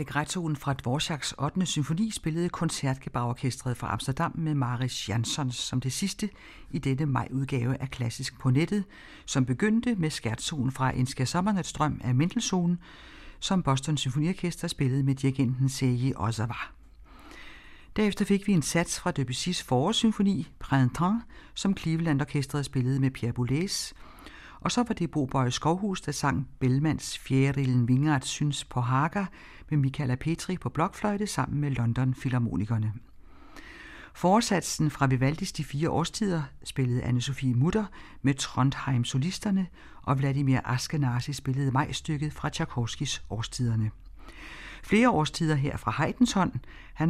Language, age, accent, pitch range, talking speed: Danish, 60-79, native, 130-170 Hz, 135 wpm